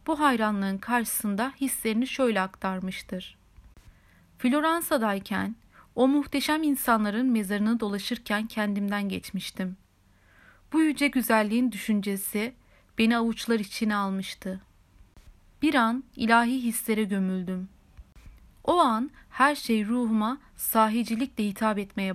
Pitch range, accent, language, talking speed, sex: 190-250 Hz, native, Turkish, 95 wpm, female